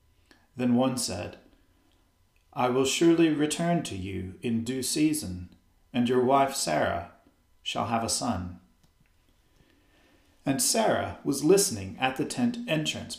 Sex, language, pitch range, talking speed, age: male, English, 95-130 Hz, 125 wpm, 40-59